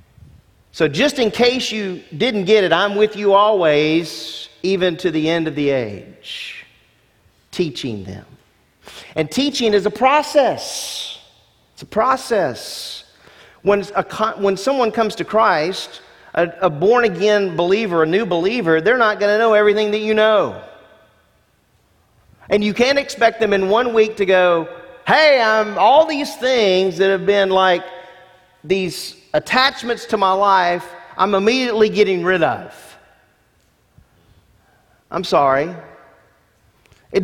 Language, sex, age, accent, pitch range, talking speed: English, male, 40-59, American, 145-205 Hz, 135 wpm